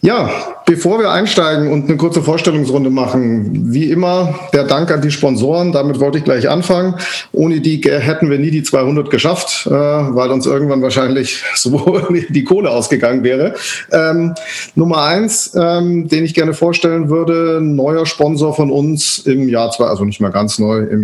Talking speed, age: 170 wpm, 40-59